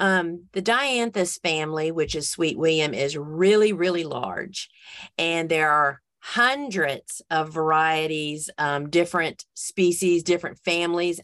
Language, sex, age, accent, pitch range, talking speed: English, female, 40-59, American, 160-195 Hz, 125 wpm